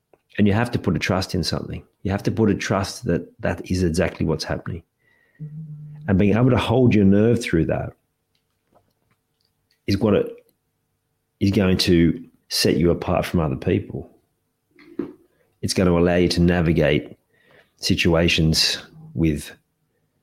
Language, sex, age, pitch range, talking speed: English, male, 40-59, 85-115 Hz, 150 wpm